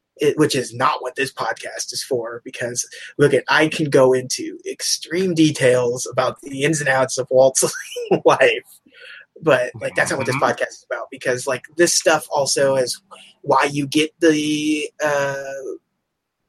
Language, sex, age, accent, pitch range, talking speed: English, male, 20-39, American, 135-180 Hz, 165 wpm